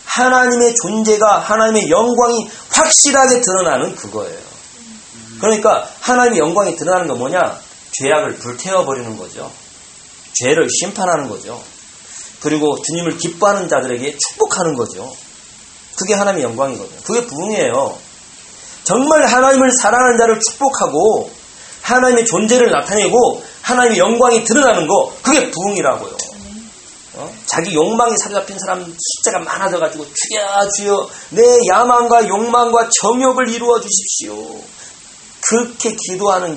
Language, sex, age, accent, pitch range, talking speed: English, male, 30-49, Korean, 185-240 Hz, 100 wpm